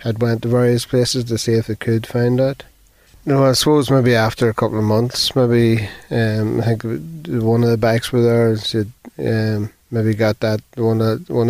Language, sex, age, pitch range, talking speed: English, male, 30-49, 110-120 Hz, 210 wpm